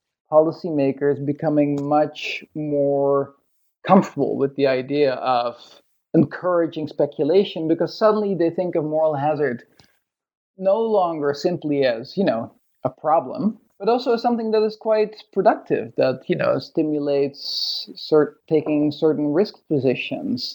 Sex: male